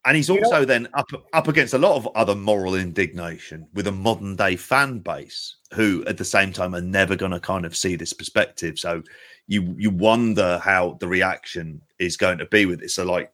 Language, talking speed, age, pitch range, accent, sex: English, 210 wpm, 30-49, 95-135 Hz, British, male